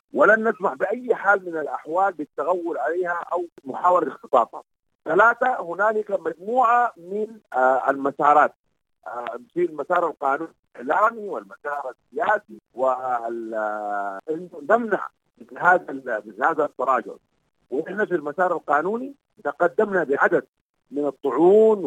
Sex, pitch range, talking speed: male, 145-215 Hz, 90 wpm